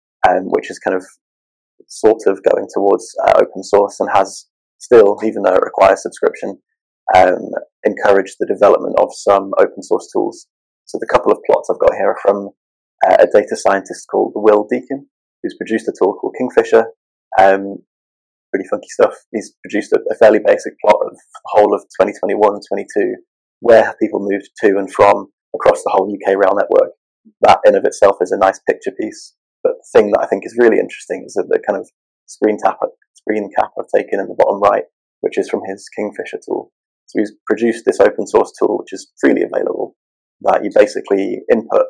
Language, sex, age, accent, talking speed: English, male, 20-39, British, 195 wpm